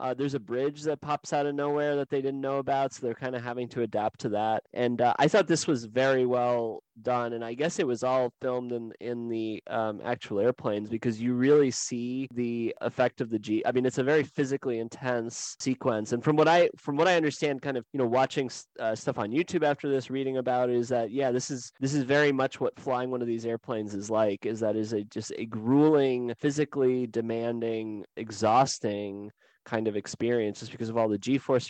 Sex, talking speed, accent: male, 230 wpm, American